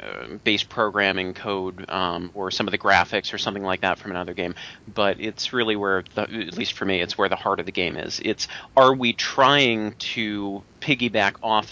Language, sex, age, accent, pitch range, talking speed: English, male, 30-49, American, 95-115 Hz, 205 wpm